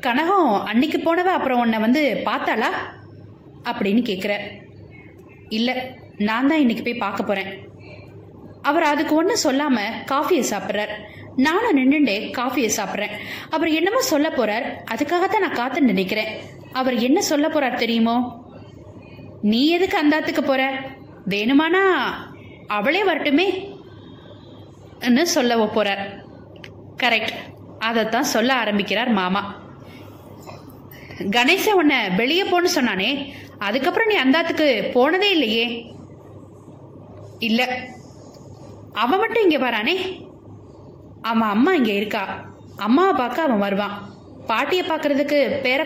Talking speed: 75 wpm